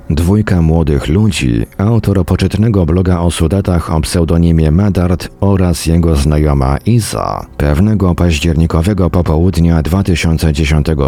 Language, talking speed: Polish, 105 wpm